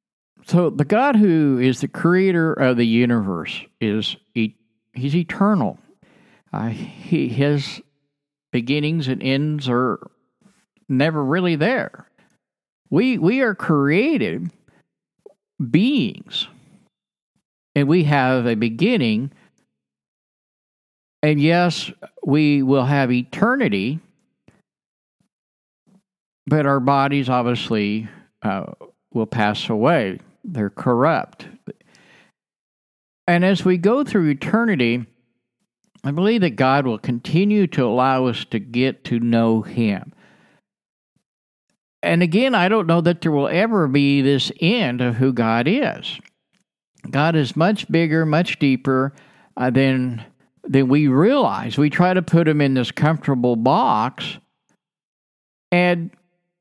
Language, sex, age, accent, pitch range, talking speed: English, male, 50-69, American, 125-180 Hz, 110 wpm